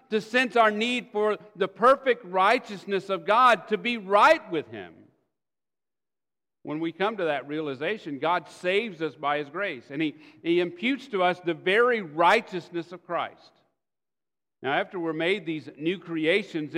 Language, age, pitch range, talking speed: English, 50-69, 170-230 Hz, 160 wpm